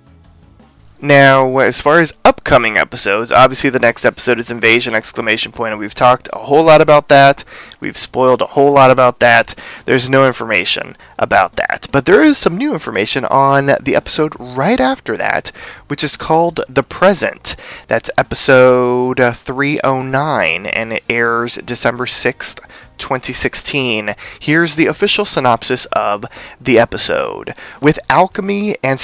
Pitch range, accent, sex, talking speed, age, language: 120-155 Hz, American, male, 145 wpm, 20-39, English